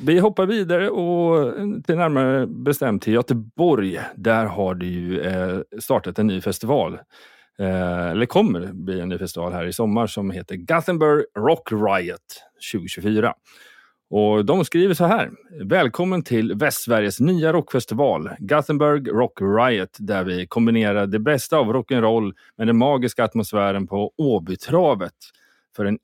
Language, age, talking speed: Swedish, 30-49, 145 wpm